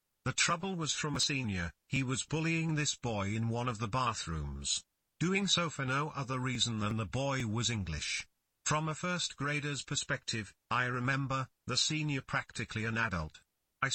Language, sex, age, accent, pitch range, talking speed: English, male, 50-69, British, 110-145 Hz, 170 wpm